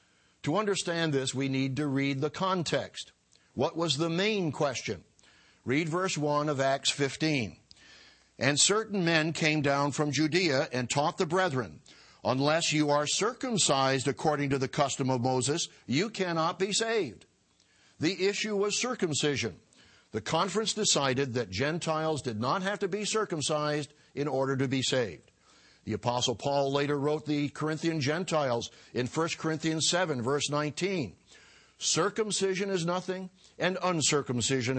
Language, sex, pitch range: English, male, 135-170 Hz